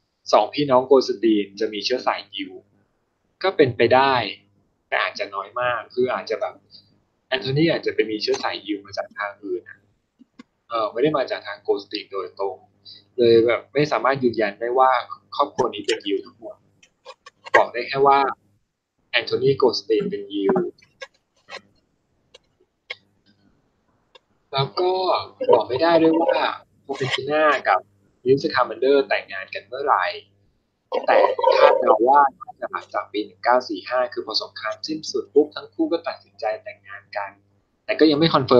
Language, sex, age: English, male, 20-39